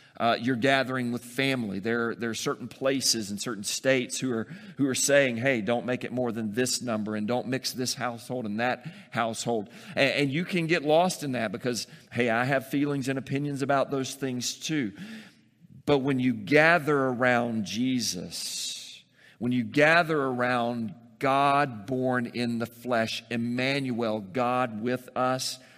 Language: English